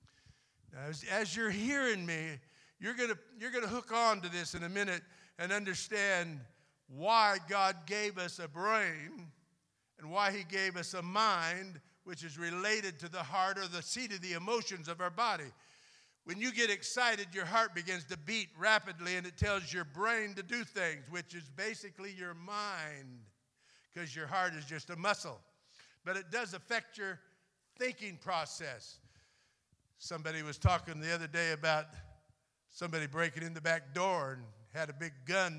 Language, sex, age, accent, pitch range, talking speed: English, male, 60-79, American, 150-200 Hz, 175 wpm